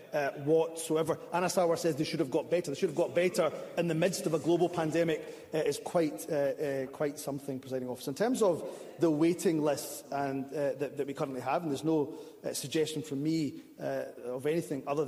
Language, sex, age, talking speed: English, male, 30-49, 220 wpm